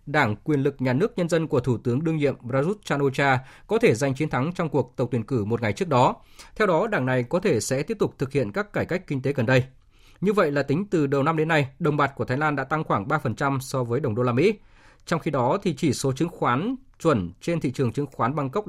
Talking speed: 275 wpm